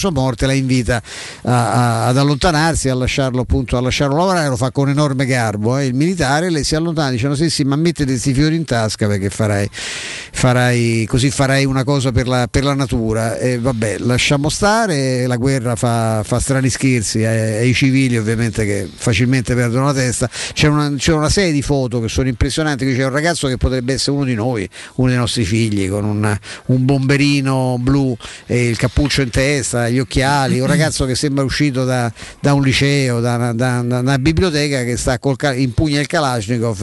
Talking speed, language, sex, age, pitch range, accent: 200 wpm, Italian, male, 50-69, 120-145 Hz, native